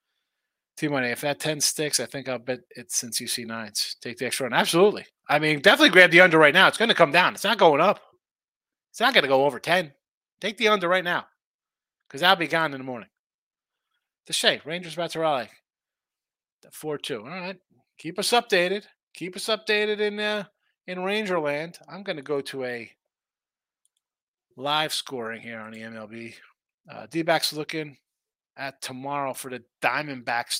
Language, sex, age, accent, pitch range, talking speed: English, male, 30-49, American, 130-190 Hz, 190 wpm